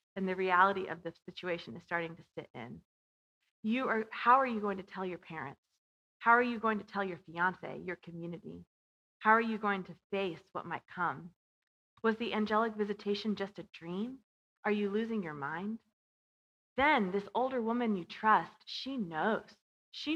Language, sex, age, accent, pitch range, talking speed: English, female, 30-49, American, 180-225 Hz, 180 wpm